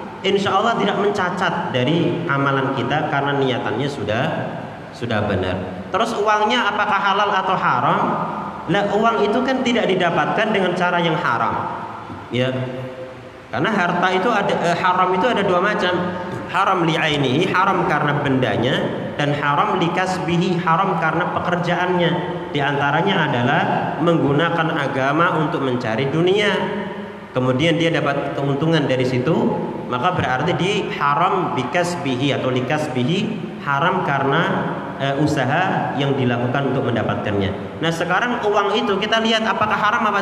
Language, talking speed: Indonesian, 135 wpm